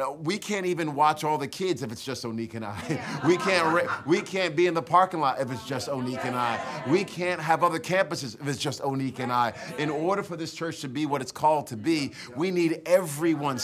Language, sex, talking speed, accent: English, male, 240 wpm, American